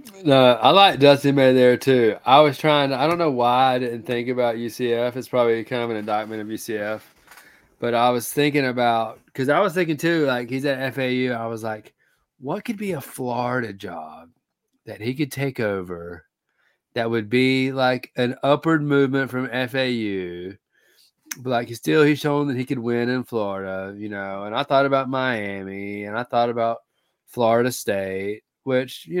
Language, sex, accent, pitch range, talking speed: English, male, American, 110-130 Hz, 185 wpm